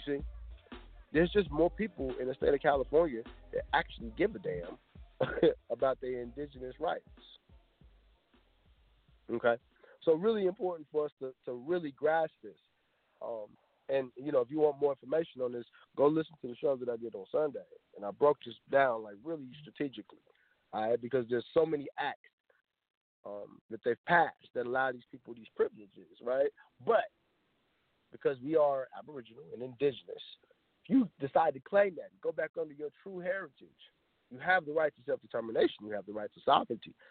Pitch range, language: 130-185 Hz, English